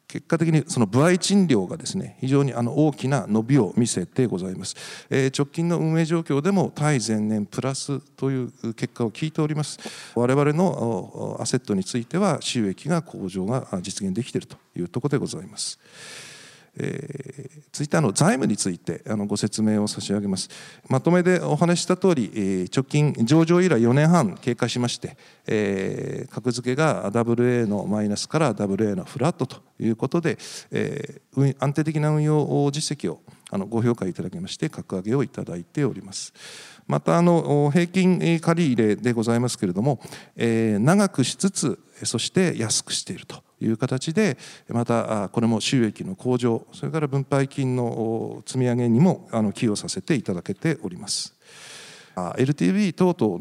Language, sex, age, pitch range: Japanese, male, 50-69, 115-160 Hz